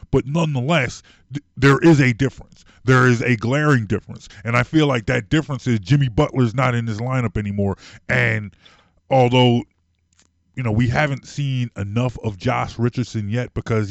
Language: English